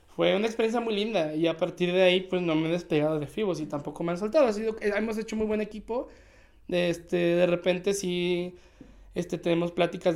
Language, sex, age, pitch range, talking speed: Spanish, male, 20-39, 155-185 Hz, 220 wpm